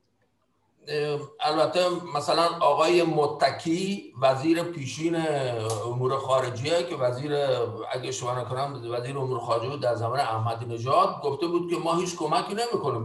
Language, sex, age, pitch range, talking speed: Persian, male, 50-69, 125-165 Hz, 125 wpm